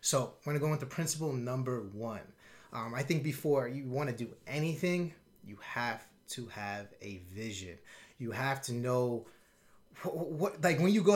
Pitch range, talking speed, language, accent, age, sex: 120-155 Hz, 170 wpm, English, American, 30-49, male